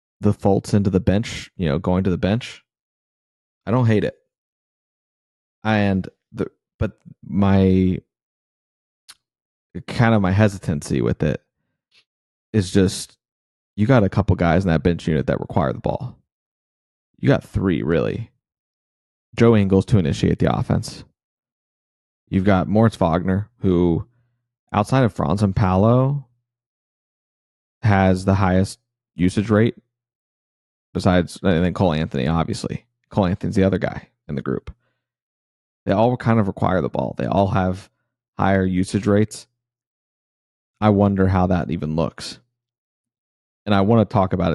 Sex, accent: male, American